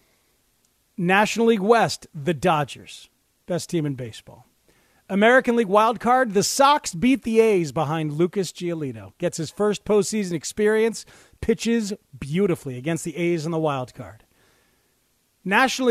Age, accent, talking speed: 40-59, American, 130 wpm